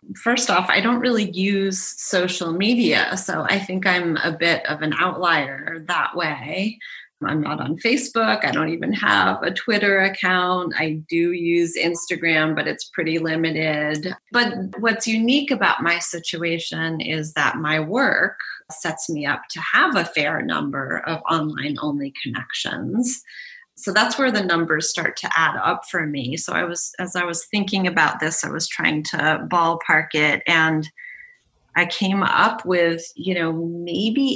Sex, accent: female, American